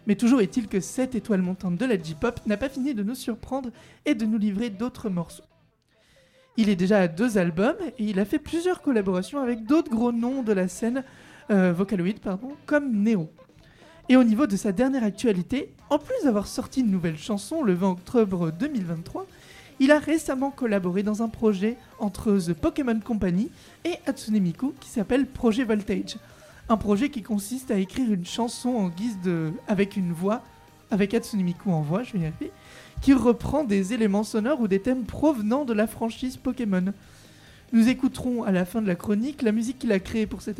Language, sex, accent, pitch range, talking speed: French, male, French, 200-255 Hz, 195 wpm